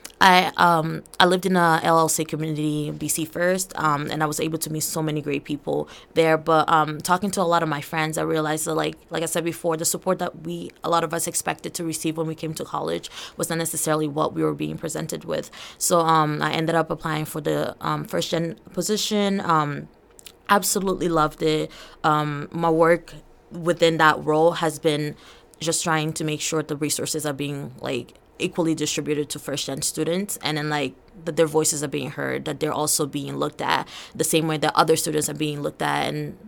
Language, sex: English, female